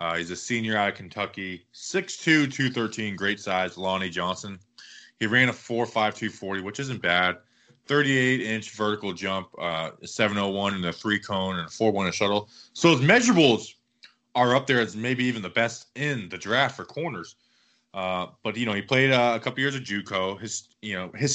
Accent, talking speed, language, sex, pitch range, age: American, 200 wpm, English, male, 100-145 Hz, 20-39